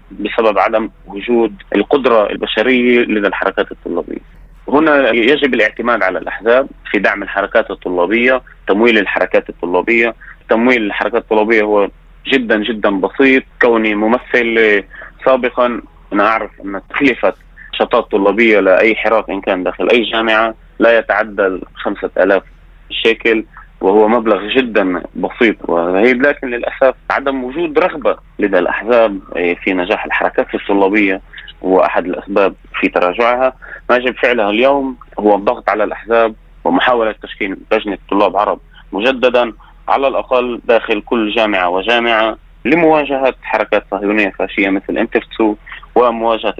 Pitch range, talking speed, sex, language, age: 105-125 Hz, 120 wpm, male, Arabic, 30-49